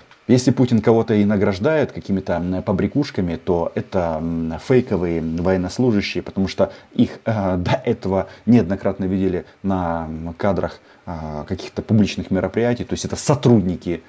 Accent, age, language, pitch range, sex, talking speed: native, 30-49, Russian, 90-120 Hz, male, 115 wpm